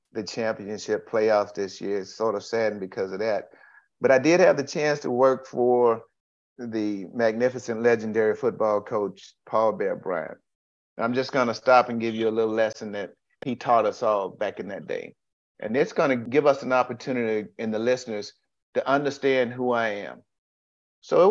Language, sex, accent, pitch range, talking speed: English, male, American, 105-120 Hz, 190 wpm